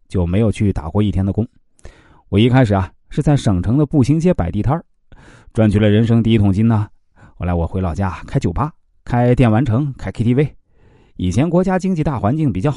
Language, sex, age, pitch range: Chinese, male, 20-39, 95-125 Hz